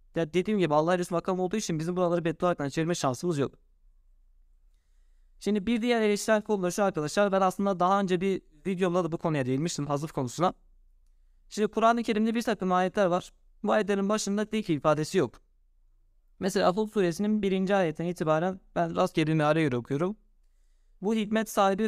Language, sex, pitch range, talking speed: Turkish, male, 155-195 Hz, 165 wpm